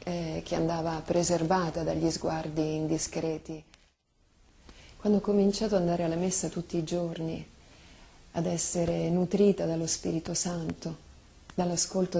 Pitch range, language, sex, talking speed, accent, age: 160-180 Hz, Italian, female, 120 wpm, native, 30-49